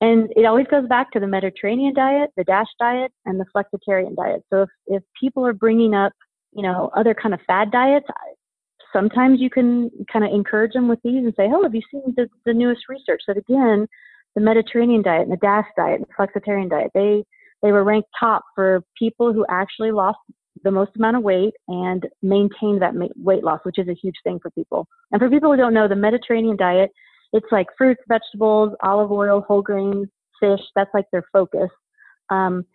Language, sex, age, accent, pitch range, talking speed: English, female, 30-49, American, 195-235 Hz, 205 wpm